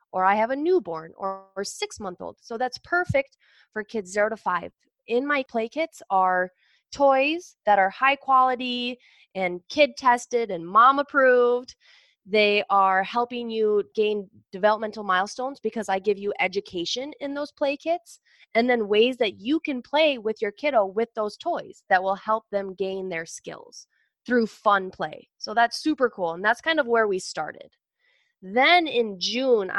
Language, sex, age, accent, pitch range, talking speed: English, female, 20-39, American, 200-270 Hz, 165 wpm